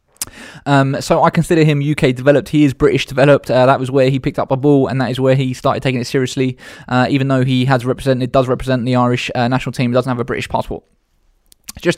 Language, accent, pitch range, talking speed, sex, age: English, British, 125-145 Hz, 240 wpm, male, 20-39